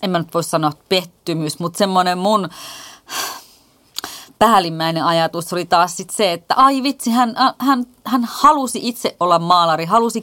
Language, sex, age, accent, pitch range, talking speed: Finnish, female, 30-49, native, 165-215 Hz, 160 wpm